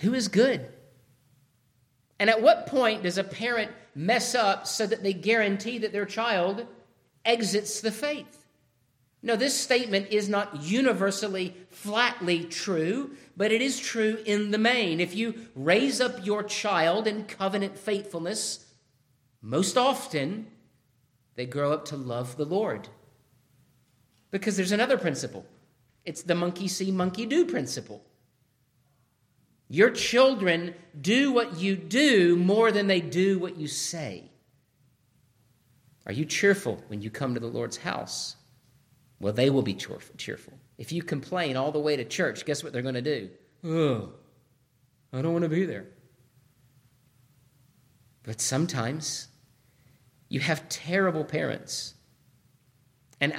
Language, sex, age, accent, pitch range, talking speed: English, male, 50-69, American, 130-205 Hz, 135 wpm